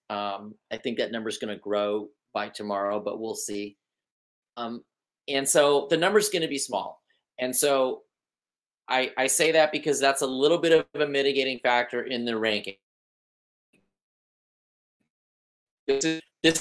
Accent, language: American, English